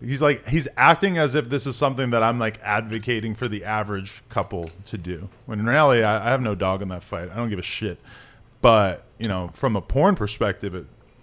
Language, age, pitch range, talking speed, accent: English, 20-39, 100-120 Hz, 230 wpm, American